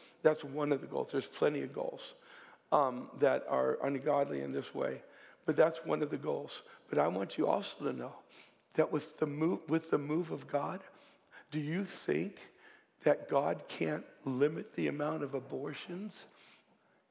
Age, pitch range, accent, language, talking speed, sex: 60-79, 150-200 Hz, American, English, 165 wpm, male